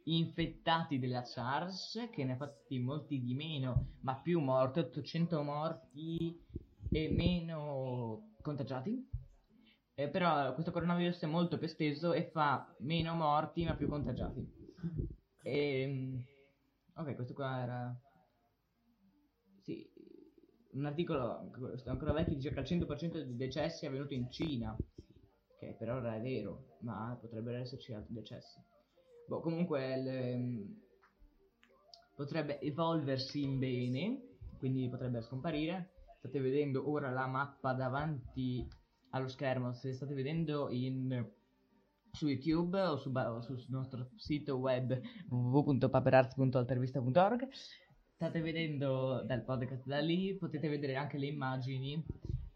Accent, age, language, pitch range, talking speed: native, 20-39, Italian, 130-165 Hz, 120 wpm